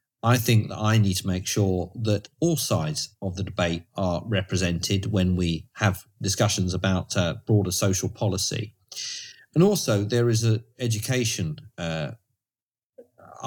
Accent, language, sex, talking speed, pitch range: British, English, male, 145 wpm, 100-120 Hz